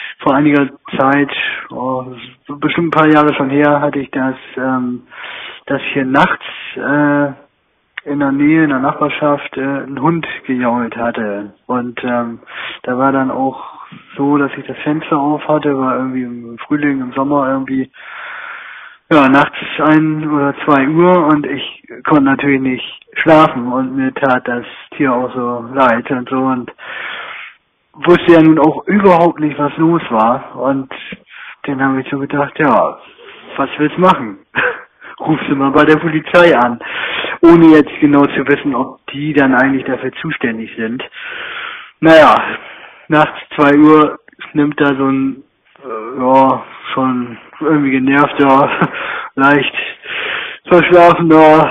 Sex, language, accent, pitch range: male, German, German, 130-155 Hz